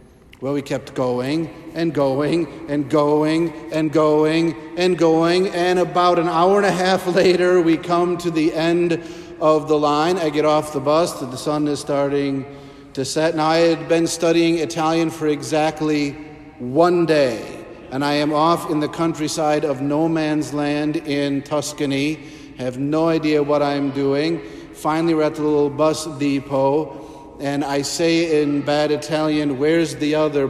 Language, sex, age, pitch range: English, male, 50-69, 140-160 Hz